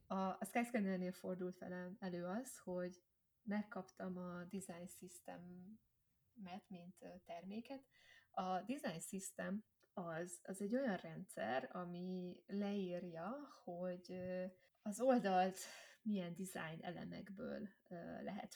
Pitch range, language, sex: 180-215 Hz, Hungarian, female